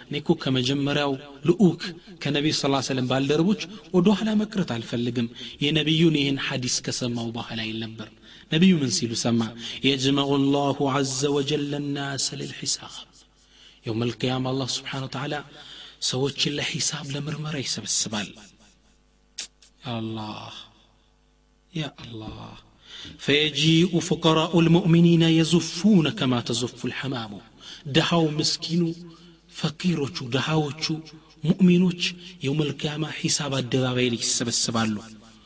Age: 30-49